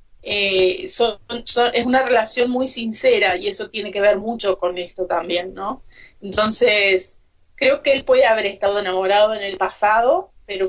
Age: 30-49